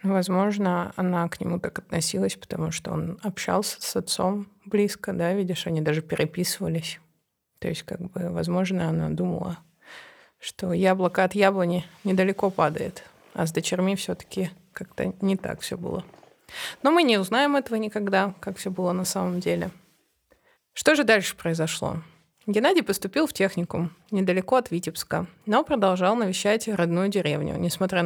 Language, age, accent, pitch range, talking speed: Russian, 20-39, native, 170-215 Hz, 150 wpm